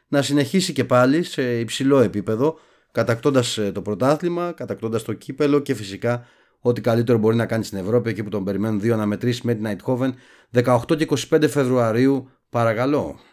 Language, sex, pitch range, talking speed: Greek, male, 105-130 Hz, 160 wpm